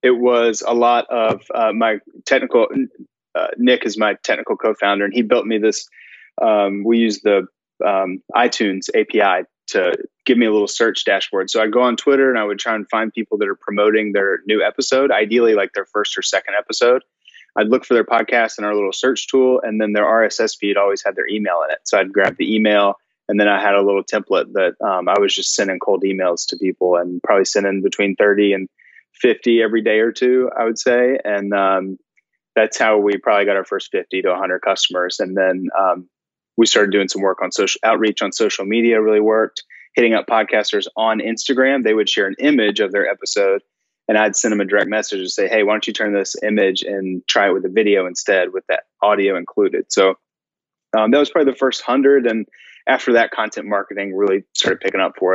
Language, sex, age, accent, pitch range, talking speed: English, male, 20-39, American, 100-125 Hz, 220 wpm